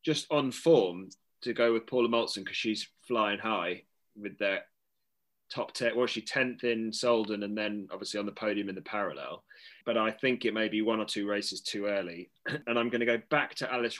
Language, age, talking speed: English, 20-39, 215 wpm